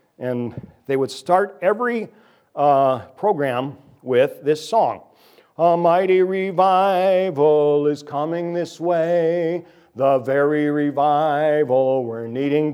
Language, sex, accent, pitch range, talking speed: English, male, American, 120-160 Hz, 105 wpm